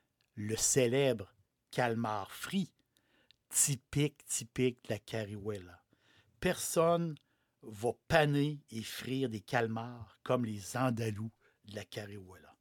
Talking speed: 105 wpm